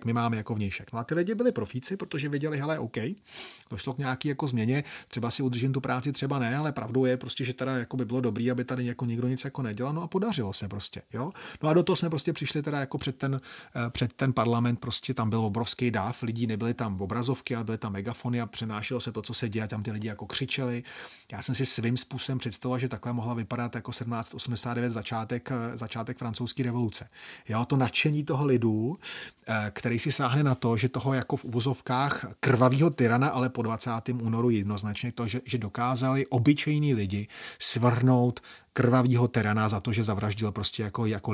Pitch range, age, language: 115-130 Hz, 30-49, Czech